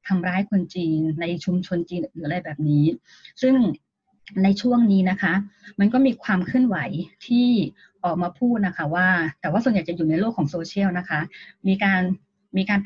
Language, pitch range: Thai, 175-210 Hz